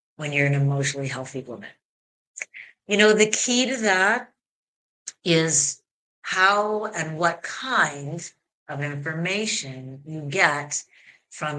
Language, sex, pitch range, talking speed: English, female, 150-215 Hz, 115 wpm